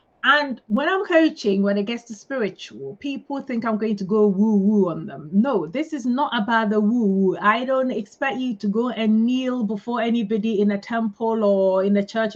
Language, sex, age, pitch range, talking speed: English, female, 30-49, 200-265 Hz, 205 wpm